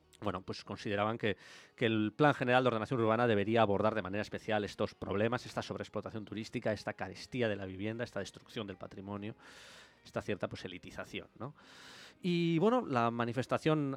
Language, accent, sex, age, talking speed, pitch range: English, Spanish, male, 20-39, 170 wpm, 100-130 Hz